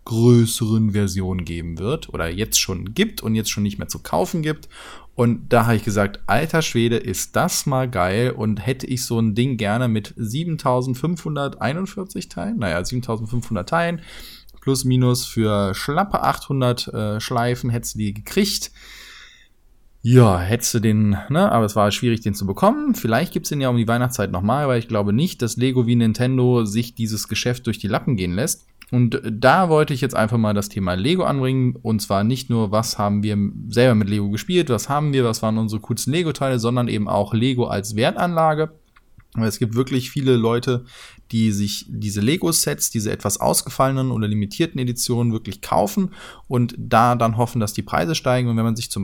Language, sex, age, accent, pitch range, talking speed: German, male, 20-39, German, 110-130 Hz, 185 wpm